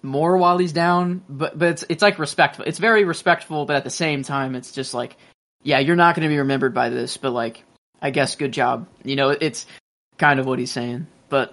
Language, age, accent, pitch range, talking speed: English, 20-39, American, 125-150 Hz, 235 wpm